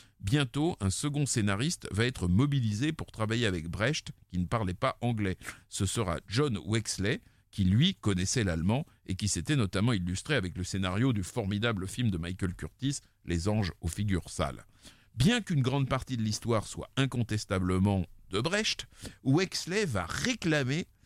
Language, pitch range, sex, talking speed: French, 100-135 Hz, male, 160 wpm